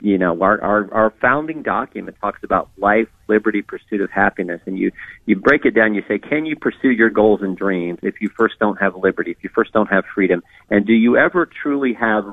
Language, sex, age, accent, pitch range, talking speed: English, male, 40-59, American, 100-130 Hz, 230 wpm